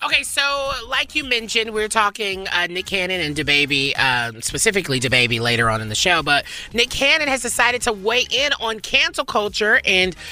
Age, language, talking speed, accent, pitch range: 30-49, English, 185 wpm, American, 145-225 Hz